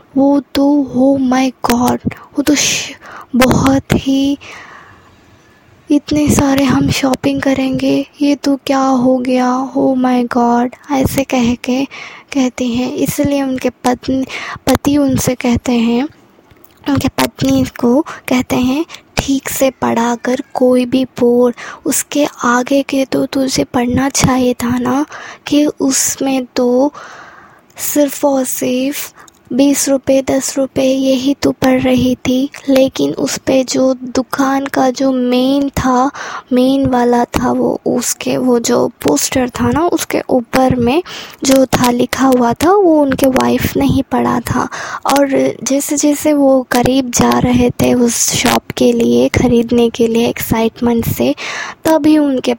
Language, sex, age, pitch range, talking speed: Hindi, female, 20-39, 245-280 Hz, 145 wpm